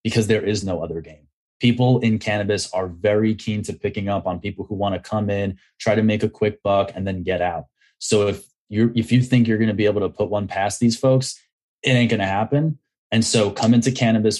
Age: 20-39